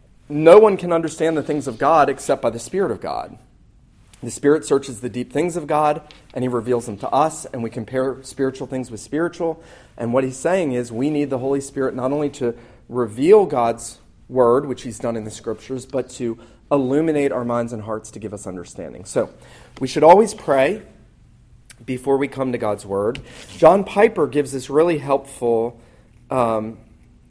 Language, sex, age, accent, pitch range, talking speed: English, male, 40-59, American, 115-145 Hz, 190 wpm